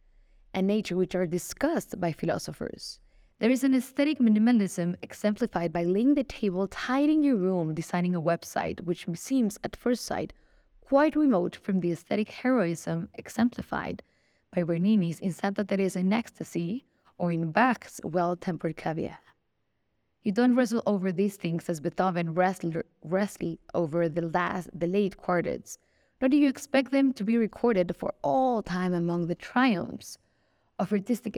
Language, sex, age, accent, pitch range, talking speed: English, female, 20-39, Mexican, 170-220 Hz, 155 wpm